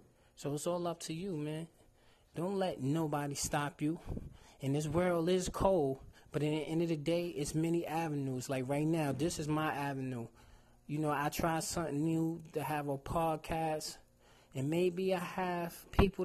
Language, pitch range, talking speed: English, 140-170 Hz, 180 wpm